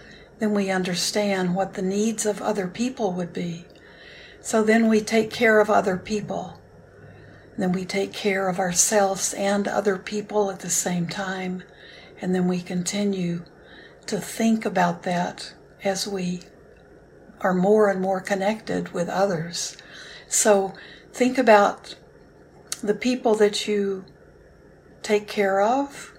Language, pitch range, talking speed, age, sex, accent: English, 180-215 Hz, 135 wpm, 60-79, female, American